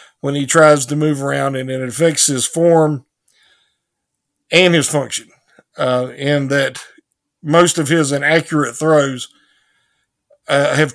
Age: 50-69